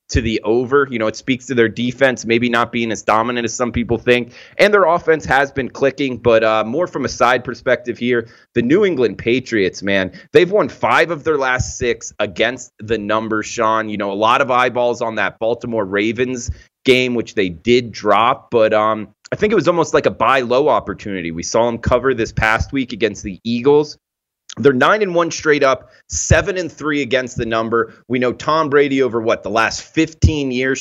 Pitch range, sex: 110-130 Hz, male